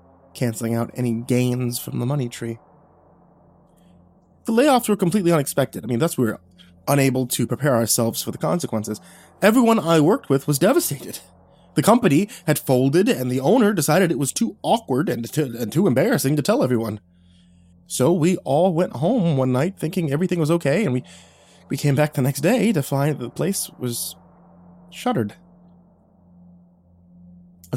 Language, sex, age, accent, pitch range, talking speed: English, male, 20-39, American, 90-150 Hz, 170 wpm